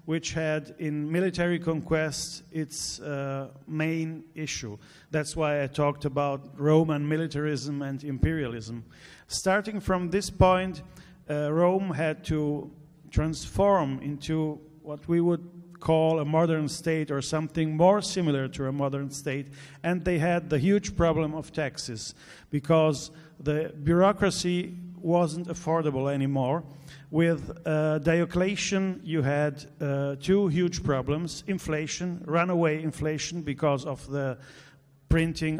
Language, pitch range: English, 145-170 Hz